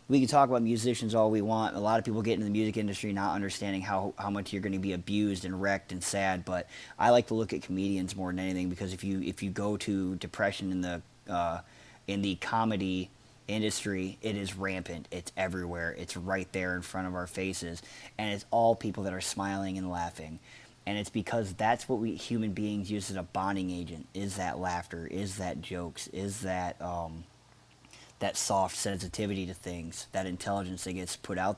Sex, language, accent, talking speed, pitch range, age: male, English, American, 210 wpm, 95-110 Hz, 30-49